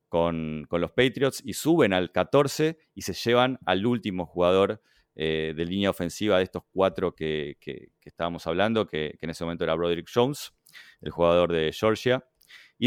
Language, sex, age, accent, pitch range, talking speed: Spanish, male, 30-49, Argentinian, 85-115 Hz, 180 wpm